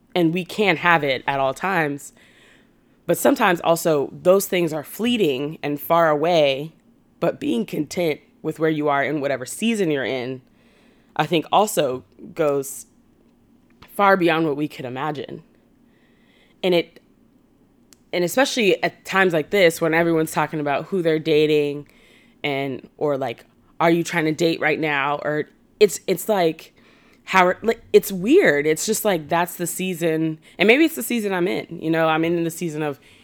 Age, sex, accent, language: 20-39, female, American, English